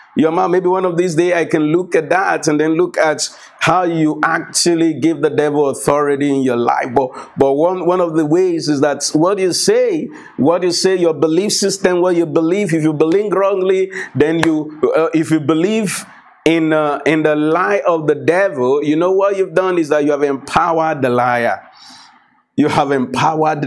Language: English